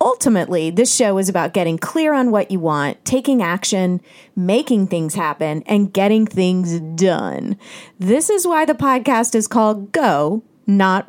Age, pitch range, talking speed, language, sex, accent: 30-49, 185-255 Hz, 155 wpm, English, female, American